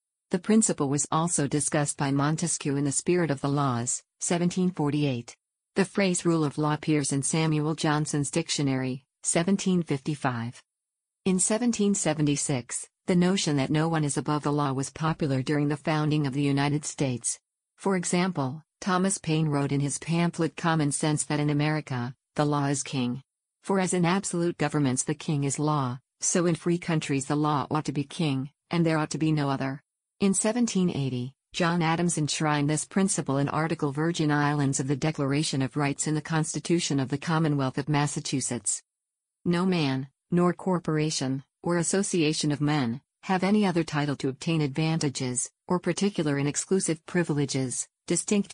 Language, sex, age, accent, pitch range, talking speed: English, female, 50-69, American, 140-170 Hz, 165 wpm